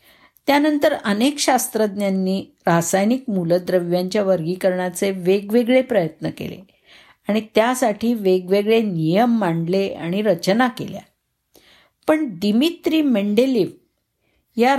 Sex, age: female, 50-69